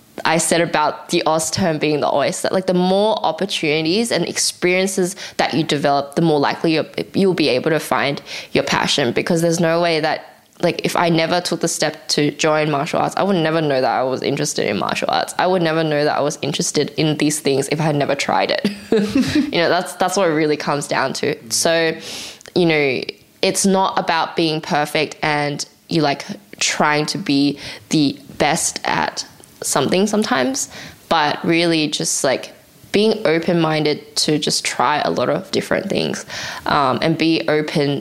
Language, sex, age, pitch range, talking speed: English, female, 10-29, 150-180 Hz, 190 wpm